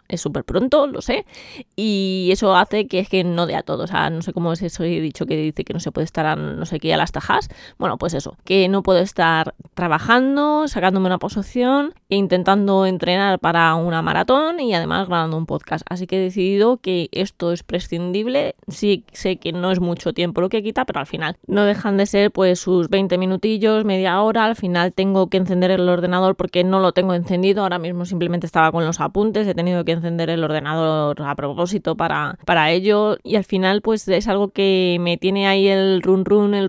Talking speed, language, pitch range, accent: 220 wpm, Spanish, 170-195 Hz, Spanish